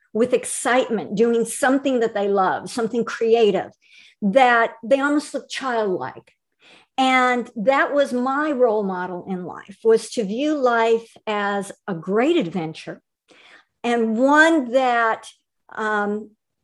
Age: 50-69